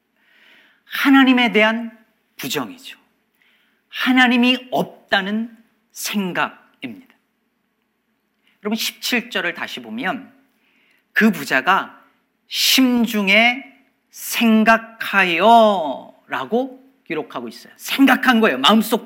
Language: Korean